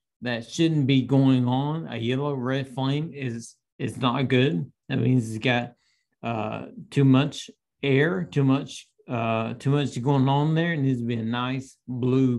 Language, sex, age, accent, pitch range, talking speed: English, male, 50-69, American, 120-140 Hz, 175 wpm